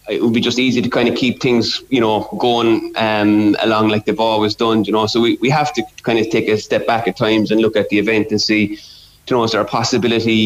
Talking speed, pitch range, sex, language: 270 wpm, 105-115 Hz, male, English